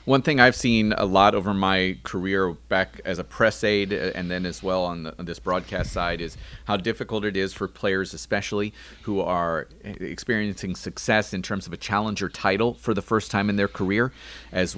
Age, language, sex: 30-49, English, male